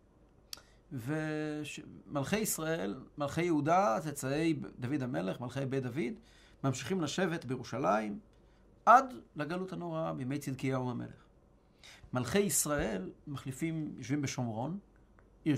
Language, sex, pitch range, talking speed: Hebrew, male, 120-155 Hz, 100 wpm